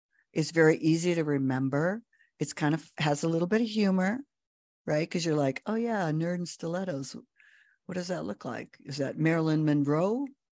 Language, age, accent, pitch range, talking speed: English, 50-69, American, 140-175 Hz, 185 wpm